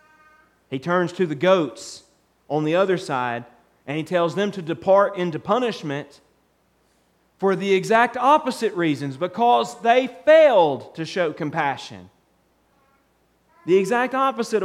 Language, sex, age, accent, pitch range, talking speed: English, male, 40-59, American, 185-265 Hz, 125 wpm